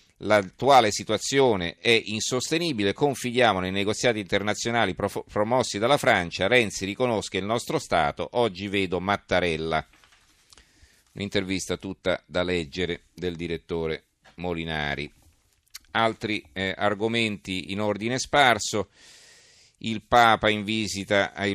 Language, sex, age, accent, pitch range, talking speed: Italian, male, 40-59, native, 90-110 Hz, 105 wpm